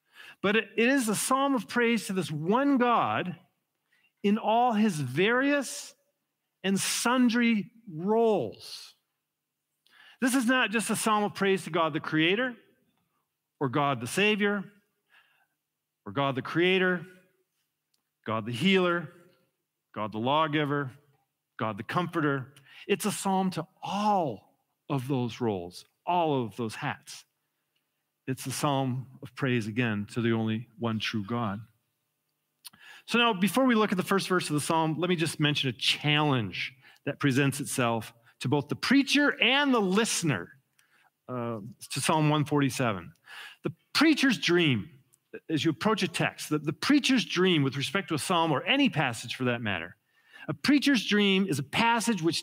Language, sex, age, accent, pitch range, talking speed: English, male, 50-69, American, 135-205 Hz, 150 wpm